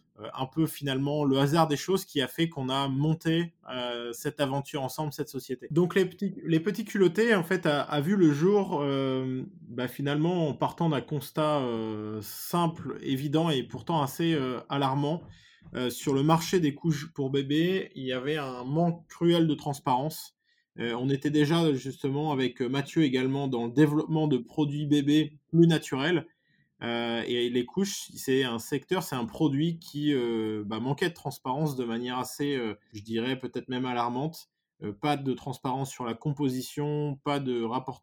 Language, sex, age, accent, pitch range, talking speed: French, male, 20-39, French, 125-155 Hz, 180 wpm